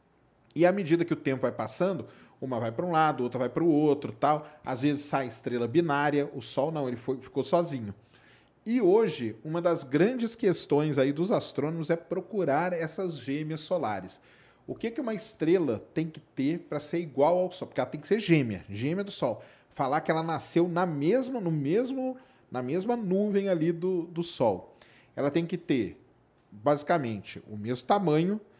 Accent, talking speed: Brazilian, 190 wpm